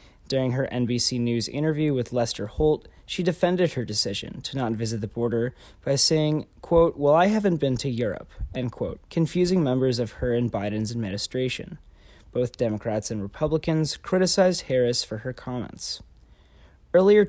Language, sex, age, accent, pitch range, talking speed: English, male, 20-39, American, 120-155 Hz, 155 wpm